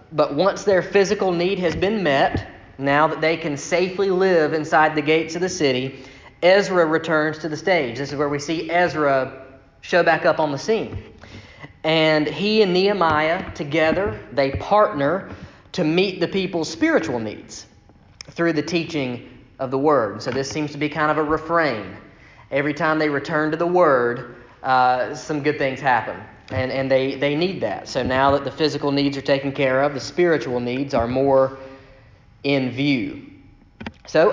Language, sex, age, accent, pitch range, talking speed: English, male, 30-49, American, 135-170 Hz, 175 wpm